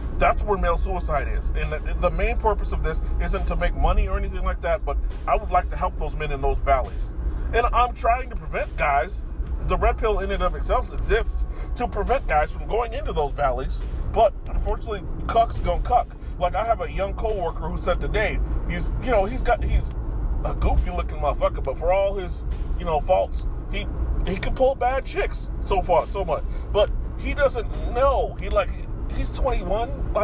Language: English